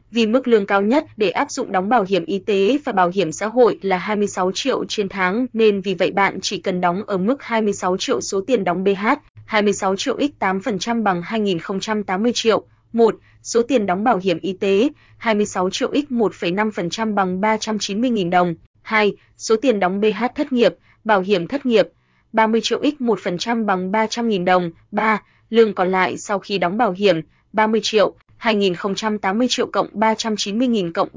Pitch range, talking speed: 190-225 Hz, 175 wpm